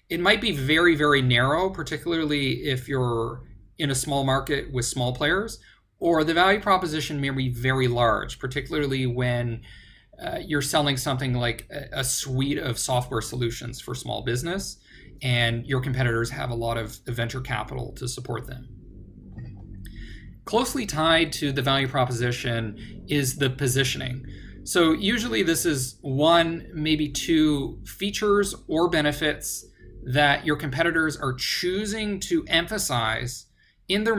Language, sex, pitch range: English, male, 125-165 Hz